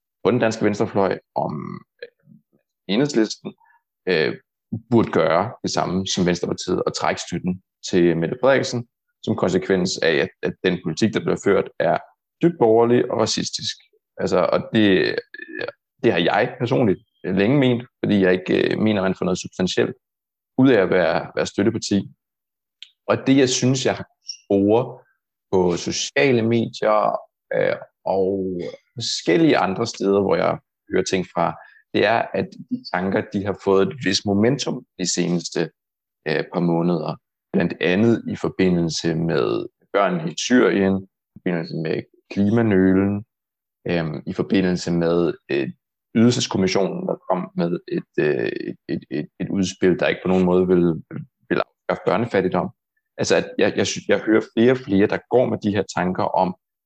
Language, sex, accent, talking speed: Danish, male, native, 150 wpm